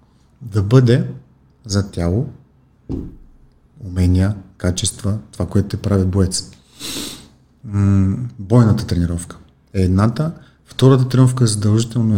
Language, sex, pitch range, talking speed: Bulgarian, male, 95-120 Hz, 90 wpm